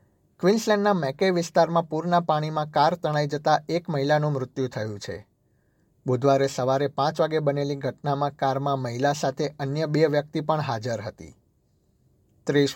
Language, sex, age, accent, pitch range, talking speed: Gujarati, male, 60-79, native, 130-155 Hz, 135 wpm